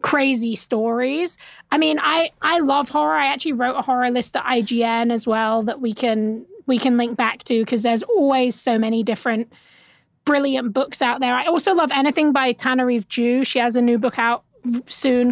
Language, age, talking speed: English, 20-39, 195 wpm